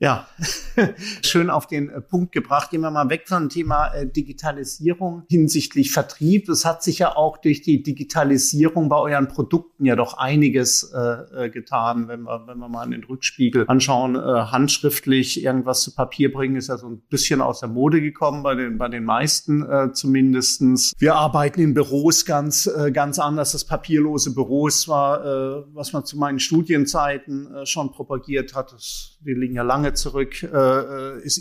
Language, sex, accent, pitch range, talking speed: German, male, German, 130-155 Hz, 165 wpm